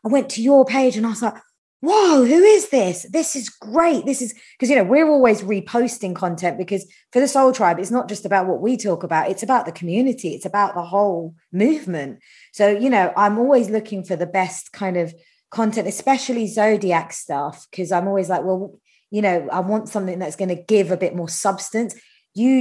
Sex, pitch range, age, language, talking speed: female, 180-225 Hz, 20-39, English, 215 wpm